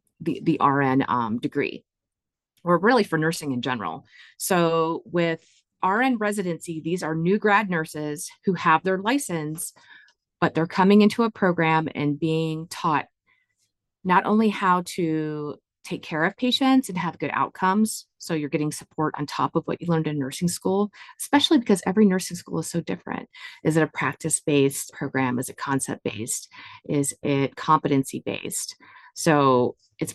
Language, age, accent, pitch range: English, 30-49, American, 145-185 Hz